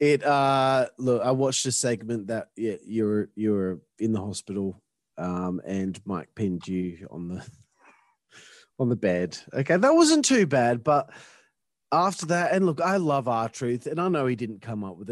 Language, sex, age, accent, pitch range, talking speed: English, male, 30-49, Australian, 120-175 Hz, 190 wpm